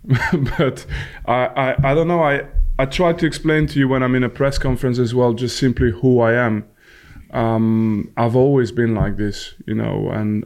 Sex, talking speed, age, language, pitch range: male, 200 wpm, 20-39, English, 110-130 Hz